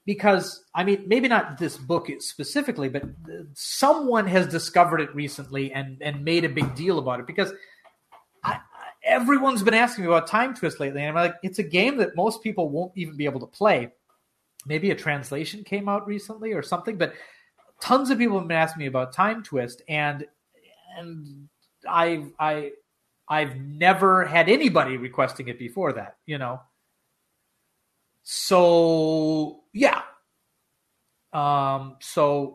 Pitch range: 140-195 Hz